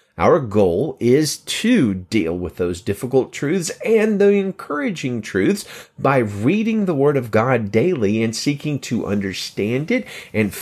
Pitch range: 100-135 Hz